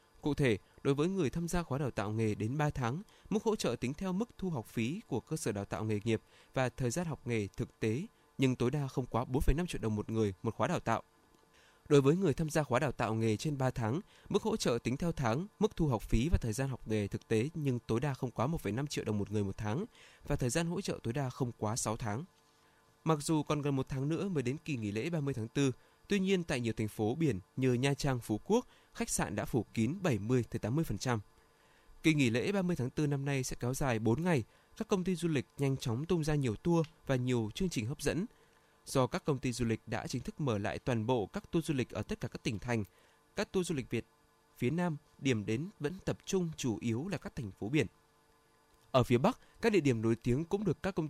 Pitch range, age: 115-160 Hz, 20-39